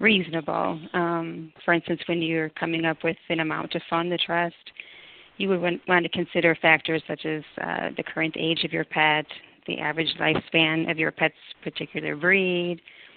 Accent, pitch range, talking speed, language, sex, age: American, 160-175 Hz, 175 wpm, English, female, 30-49